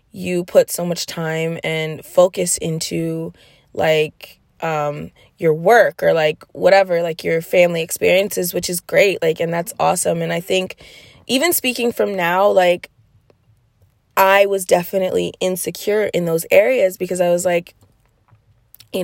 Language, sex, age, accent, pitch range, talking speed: English, female, 20-39, American, 160-195 Hz, 145 wpm